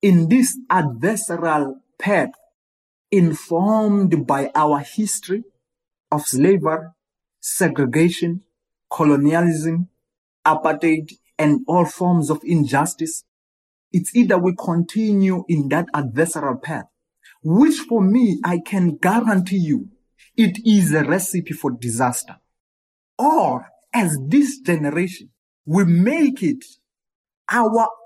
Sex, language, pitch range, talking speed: male, English, 160-220 Hz, 100 wpm